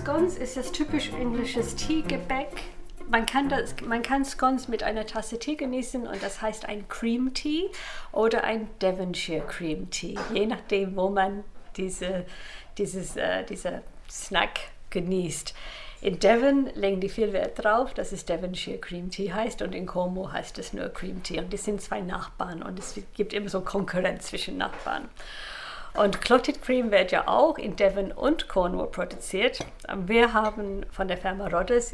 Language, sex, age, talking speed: German, female, 50-69, 165 wpm